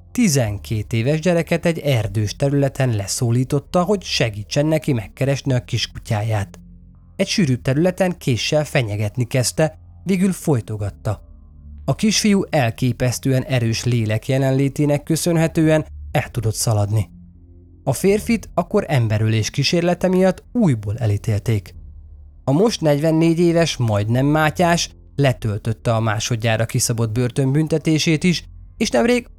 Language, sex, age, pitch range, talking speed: Hungarian, male, 20-39, 110-160 Hz, 110 wpm